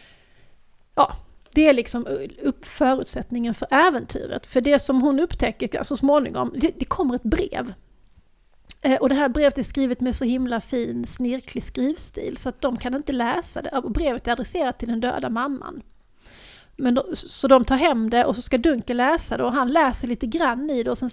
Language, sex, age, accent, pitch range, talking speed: Swedish, female, 30-49, native, 235-275 Hz, 190 wpm